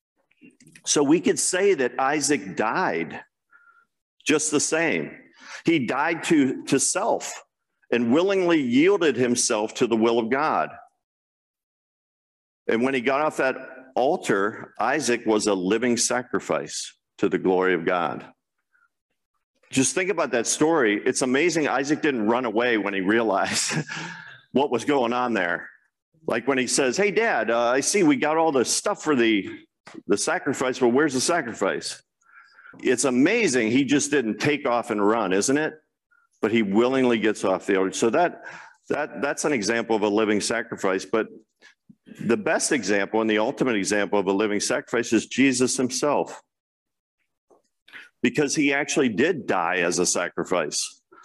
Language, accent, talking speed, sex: English, American, 155 wpm, male